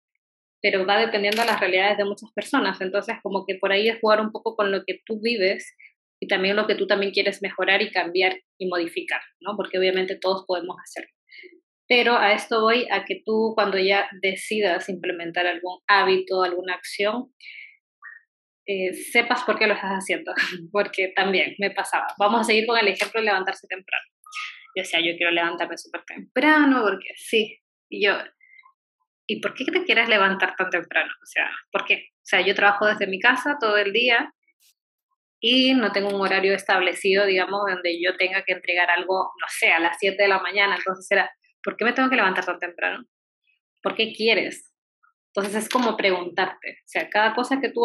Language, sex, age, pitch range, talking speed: Spanish, female, 20-39, 190-230 Hz, 190 wpm